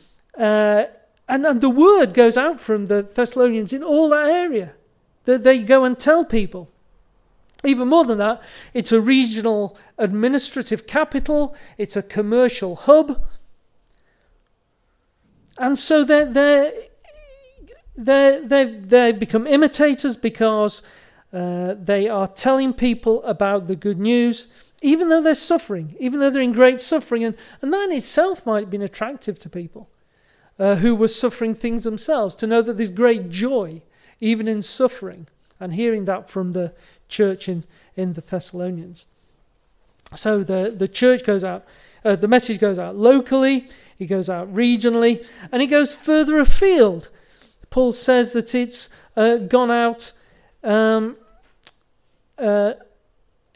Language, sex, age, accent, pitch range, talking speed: English, male, 40-59, British, 205-265 Hz, 140 wpm